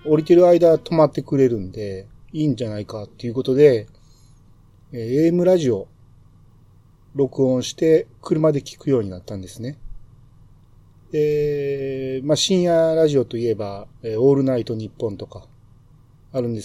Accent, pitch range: native, 110-140 Hz